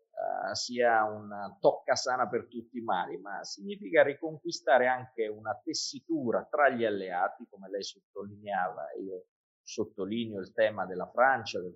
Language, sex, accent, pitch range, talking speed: Italian, male, native, 110-165 Hz, 140 wpm